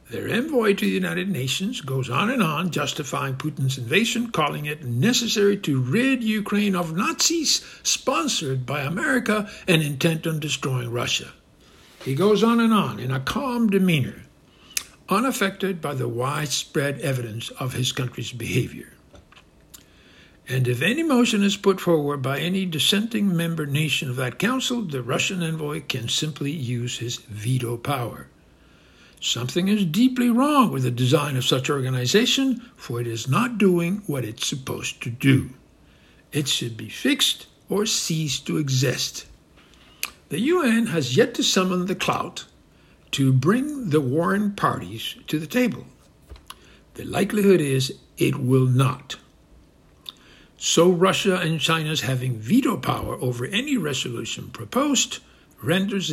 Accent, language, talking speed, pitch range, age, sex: American, English, 140 wpm, 130-200 Hz, 60-79, male